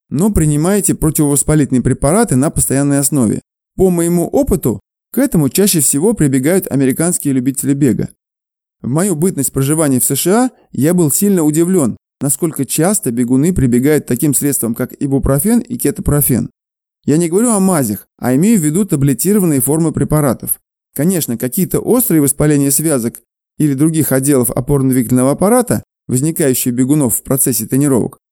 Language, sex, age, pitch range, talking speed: Russian, male, 20-39, 130-175 Hz, 140 wpm